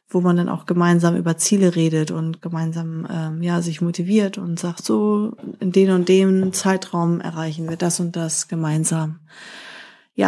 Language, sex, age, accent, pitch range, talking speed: German, female, 30-49, German, 170-200 Hz, 170 wpm